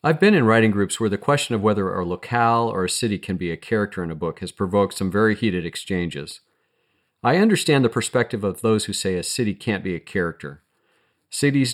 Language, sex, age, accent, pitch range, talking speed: English, male, 40-59, American, 90-115 Hz, 220 wpm